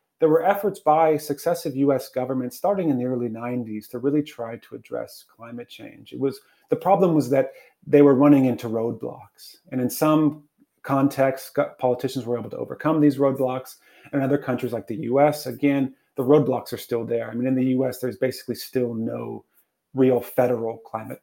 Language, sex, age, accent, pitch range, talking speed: English, male, 30-49, American, 125-150 Hz, 185 wpm